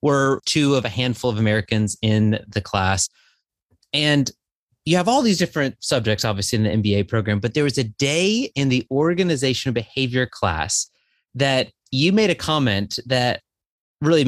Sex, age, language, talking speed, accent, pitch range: male, 30-49, English, 165 wpm, American, 115-165 Hz